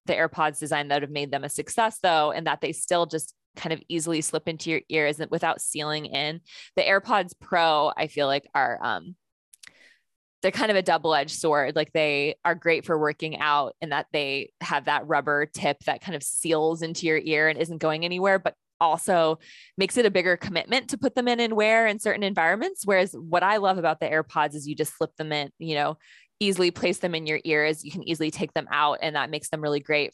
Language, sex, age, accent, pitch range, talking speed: English, female, 20-39, American, 150-180 Hz, 230 wpm